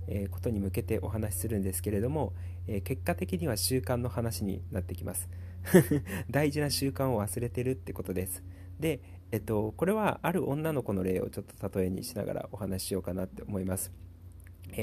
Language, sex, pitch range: Japanese, male, 90-110 Hz